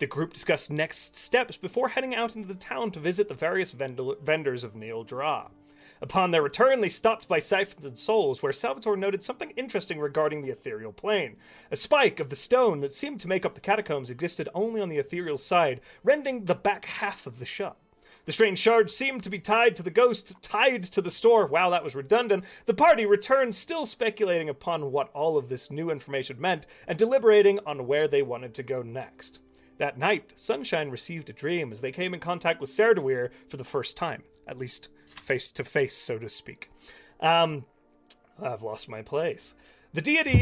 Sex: male